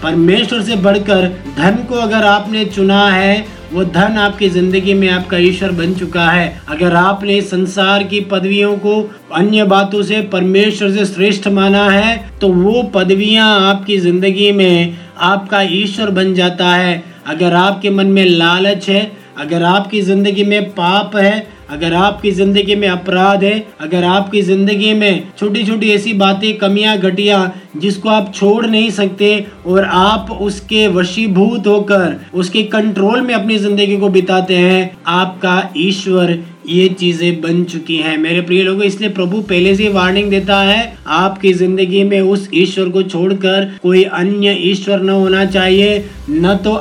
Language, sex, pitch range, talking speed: Hindi, male, 185-205 Hz, 155 wpm